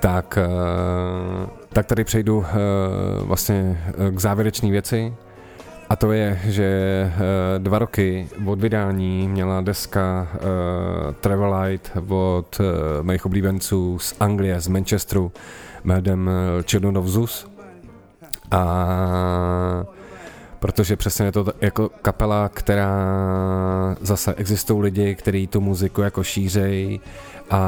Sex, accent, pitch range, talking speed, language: male, native, 90-100 Hz, 100 wpm, Czech